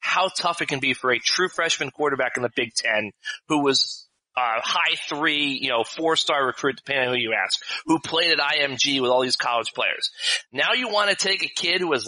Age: 30-49